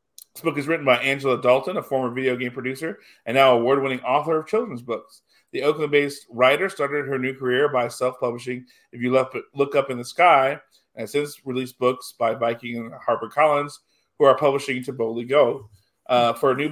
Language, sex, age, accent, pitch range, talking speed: English, male, 40-59, American, 120-140 Hz, 190 wpm